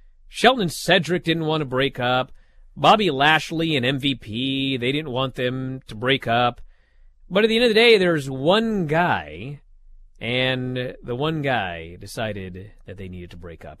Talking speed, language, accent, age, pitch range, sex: 170 wpm, English, American, 30-49, 105-145 Hz, male